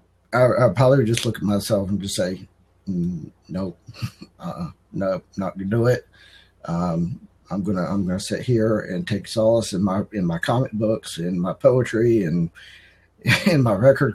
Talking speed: 180 wpm